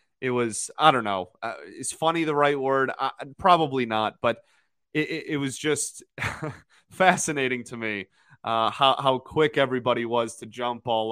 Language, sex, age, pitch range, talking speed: English, male, 20-39, 120-150 Hz, 175 wpm